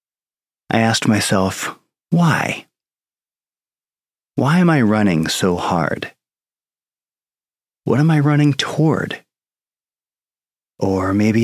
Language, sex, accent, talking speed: English, male, American, 90 wpm